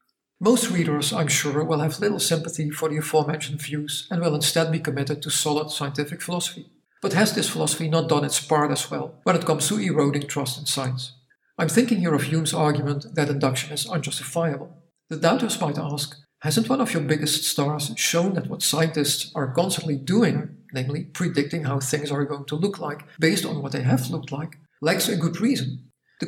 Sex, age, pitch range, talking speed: male, 50-69, 150-170 Hz, 200 wpm